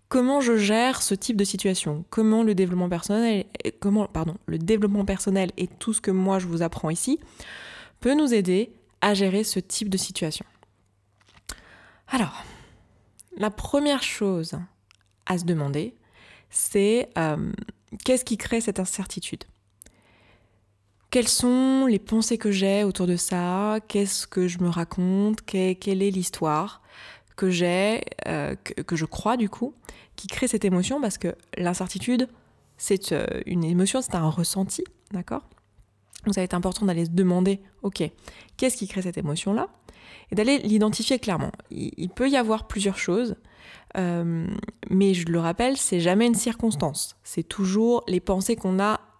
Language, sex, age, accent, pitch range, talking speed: French, female, 20-39, French, 170-215 Hz, 155 wpm